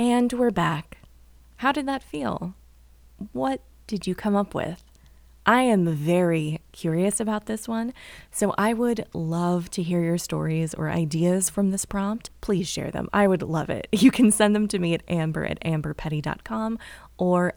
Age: 20-39